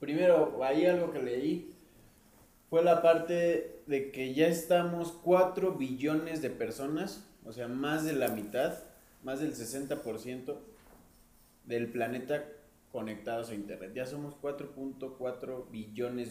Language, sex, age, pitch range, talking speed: Spanish, male, 20-39, 110-135 Hz, 125 wpm